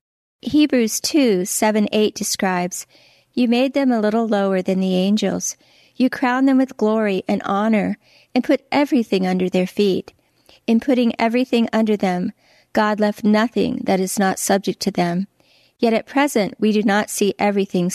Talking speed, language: 165 wpm, English